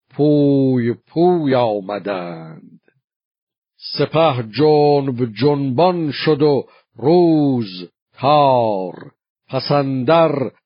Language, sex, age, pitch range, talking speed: Persian, male, 60-79, 120-150 Hz, 60 wpm